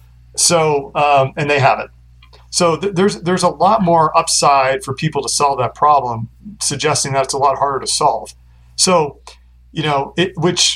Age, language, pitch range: 40-59, English, 125-155 Hz